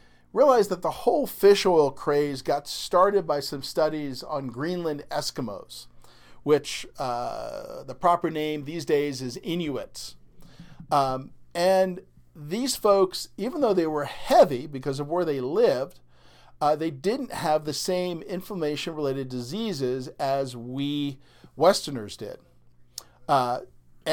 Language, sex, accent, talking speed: English, male, American, 130 wpm